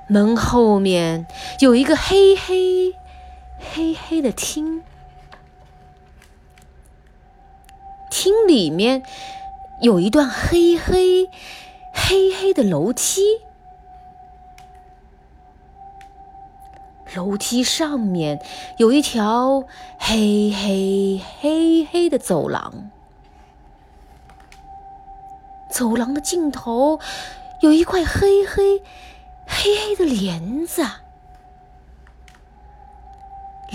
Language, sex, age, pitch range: Chinese, female, 20-39, 230-380 Hz